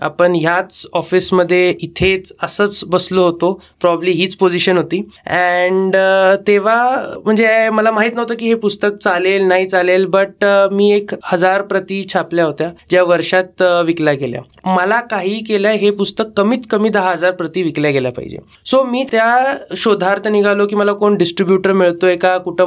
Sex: male